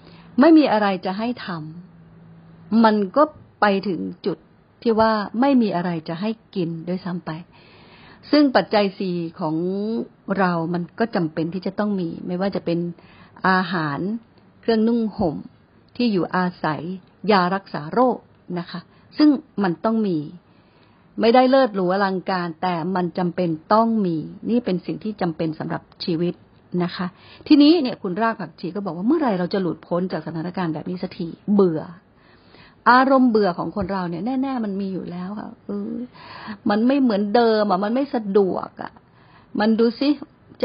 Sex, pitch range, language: female, 175-225 Hz, Thai